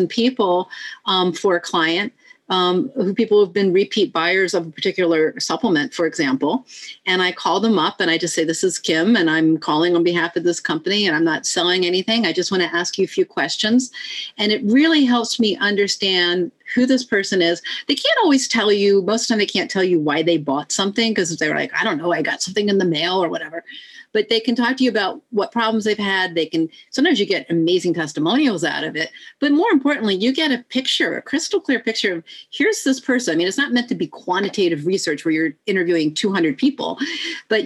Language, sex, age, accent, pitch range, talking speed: English, female, 40-59, American, 175-240 Hz, 230 wpm